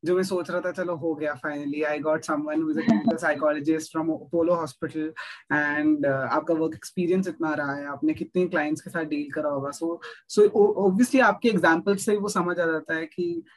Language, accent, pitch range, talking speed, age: Hindi, native, 155-185 Hz, 130 wpm, 20-39